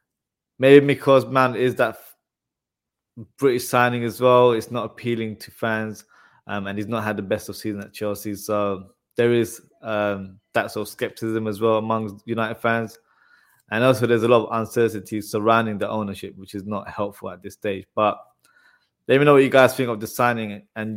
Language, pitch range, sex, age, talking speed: English, 105-120 Hz, male, 20-39, 190 wpm